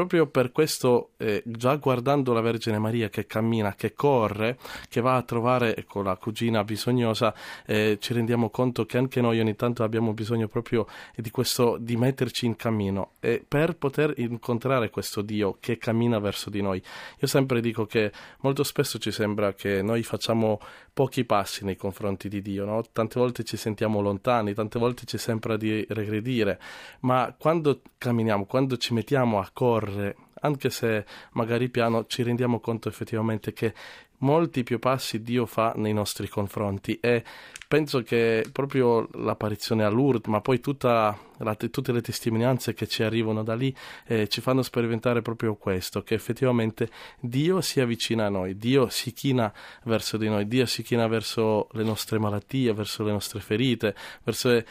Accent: native